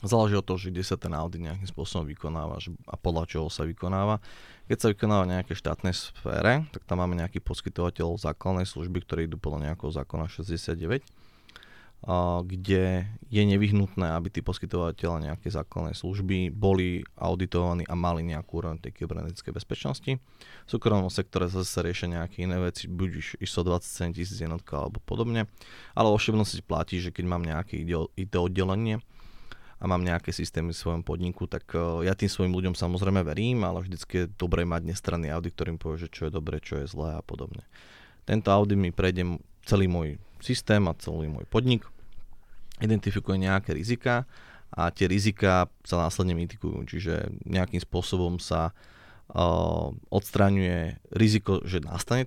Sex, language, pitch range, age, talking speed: male, Slovak, 85-100 Hz, 20-39, 160 wpm